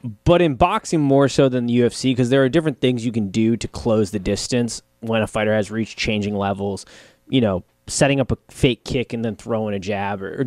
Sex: male